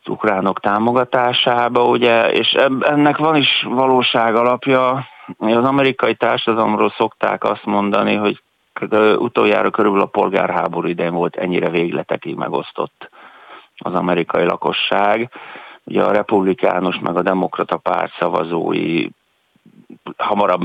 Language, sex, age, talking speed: Hungarian, male, 50-69, 110 wpm